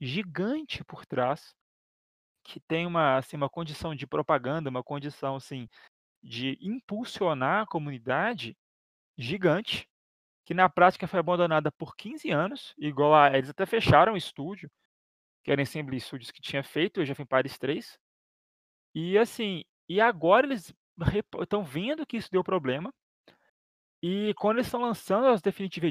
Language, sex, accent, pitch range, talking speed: Portuguese, male, Brazilian, 145-210 Hz, 155 wpm